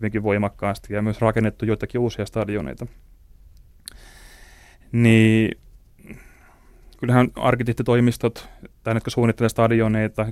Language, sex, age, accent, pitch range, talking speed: Finnish, male, 30-49, native, 100-115 Hz, 75 wpm